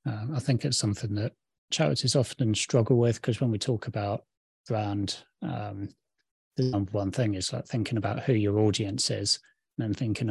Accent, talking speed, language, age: British, 185 wpm, English, 20-39